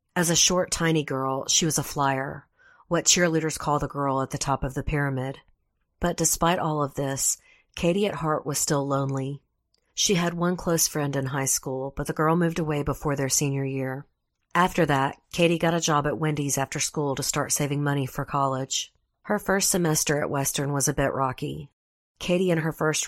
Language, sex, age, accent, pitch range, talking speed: English, female, 40-59, American, 135-155 Hz, 200 wpm